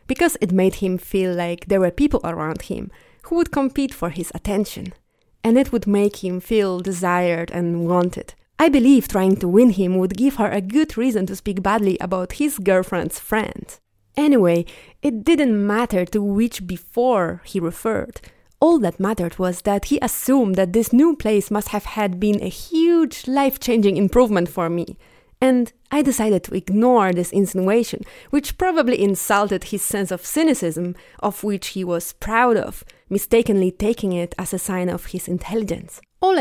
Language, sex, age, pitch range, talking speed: English, female, 20-39, 180-235 Hz, 175 wpm